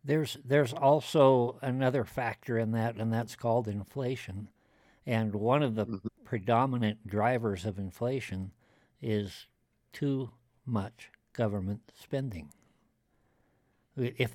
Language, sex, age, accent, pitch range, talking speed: English, male, 60-79, American, 110-130 Hz, 105 wpm